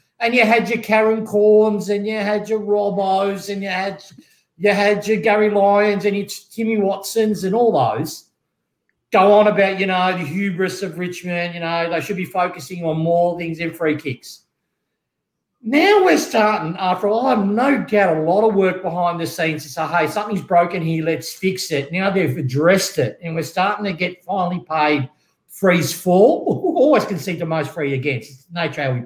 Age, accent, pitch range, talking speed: 50-69, Australian, 170-210 Hz, 200 wpm